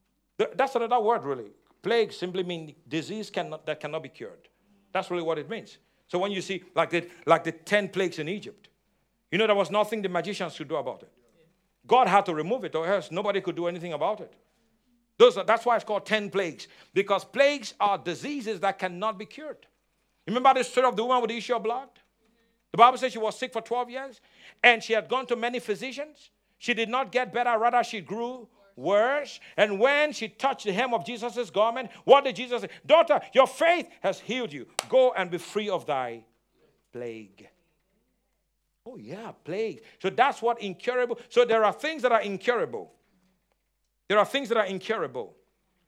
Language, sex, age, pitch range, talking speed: English, male, 60-79, 190-250 Hz, 205 wpm